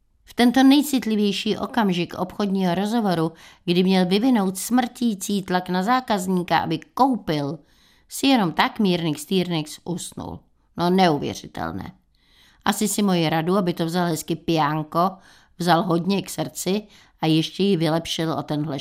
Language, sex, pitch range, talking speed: Czech, female, 165-210 Hz, 135 wpm